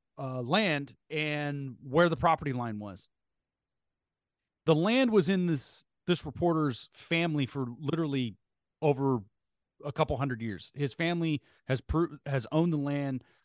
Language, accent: English, American